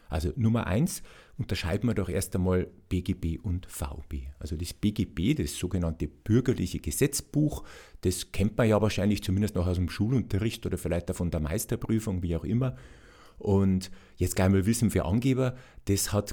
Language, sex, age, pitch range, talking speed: German, male, 50-69, 90-115 Hz, 170 wpm